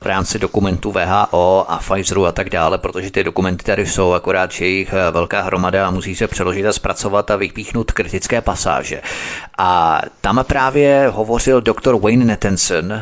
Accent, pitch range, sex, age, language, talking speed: native, 100-120 Hz, male, 30-49, Czech, 160 wpm